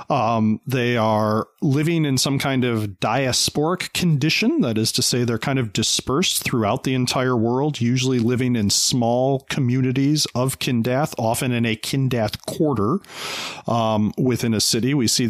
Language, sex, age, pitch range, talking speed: English, male, 40-59, 110-140 Hz, 155 wpm